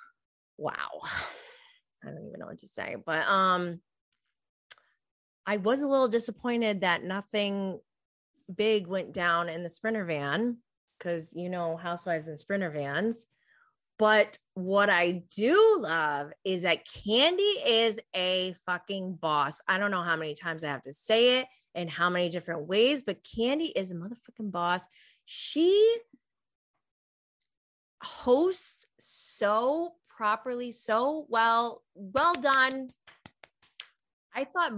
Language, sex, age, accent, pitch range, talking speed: English, female, 20-39, American, 175-260 Hz, 130 wpm